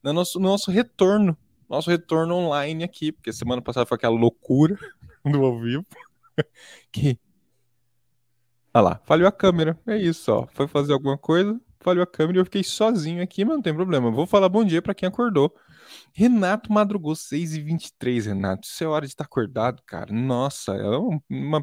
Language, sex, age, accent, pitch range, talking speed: Portuguese, male, 20-39, Brazilian, 120-170 Hz, 170 wpm